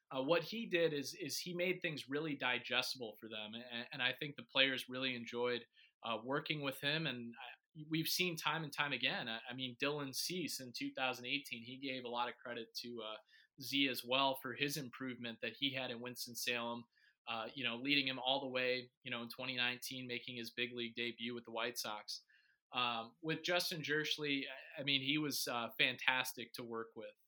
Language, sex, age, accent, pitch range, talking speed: English, male, 30-49, American, 120-140 Hz, 205 wpm